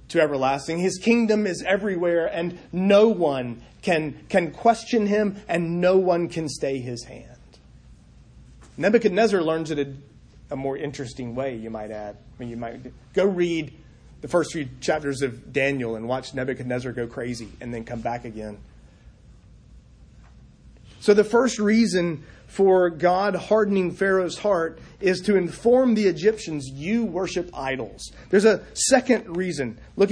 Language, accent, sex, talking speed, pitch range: English, American, male, 150 wpm, 130-200 Hz